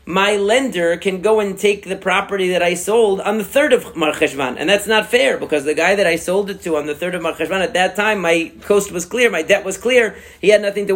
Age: 40-59